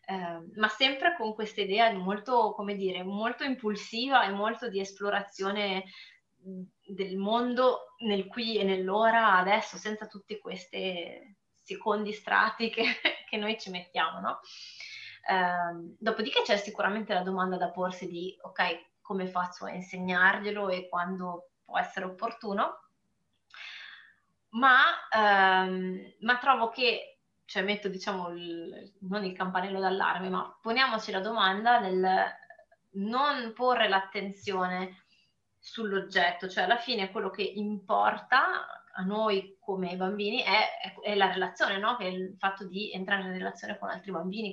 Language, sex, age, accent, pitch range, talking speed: Italian, female, 20-39, native, 185-225 Hz, 130 wpm